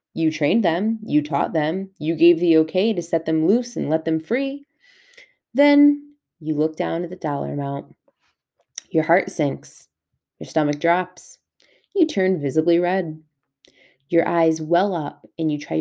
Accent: American